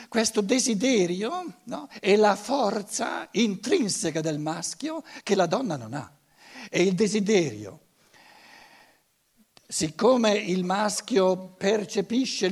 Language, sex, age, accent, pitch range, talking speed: Italian, male, 60-79, native, 155-235 Hz, 100 wpm